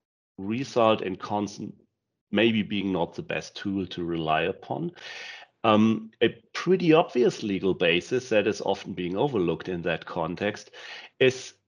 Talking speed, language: 140 wpm, English